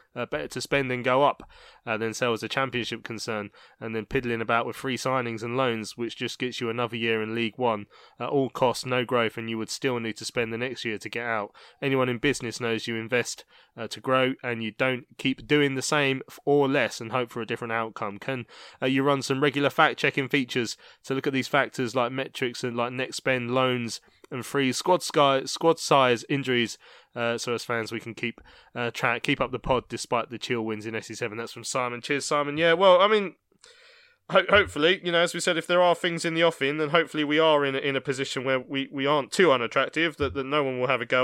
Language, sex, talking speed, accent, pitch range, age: English, male, 245 wpm, British, 115-140 Hz, 20-39